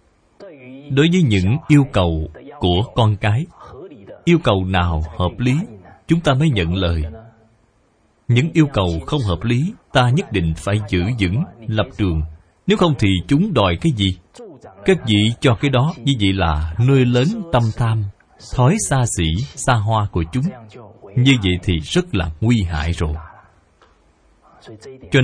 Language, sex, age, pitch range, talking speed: Vietnamese, male, 20-39, 90-135 Hz, 160 wpm